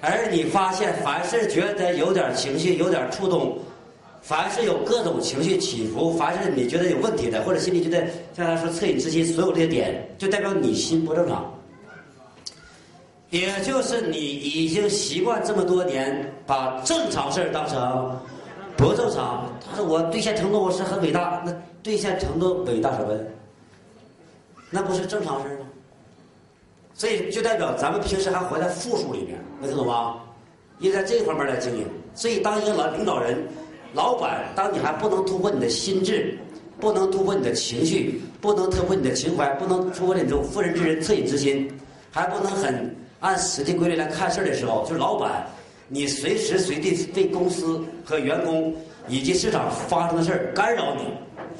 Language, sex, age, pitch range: Chinese, male, 40-59, 145-195 Hz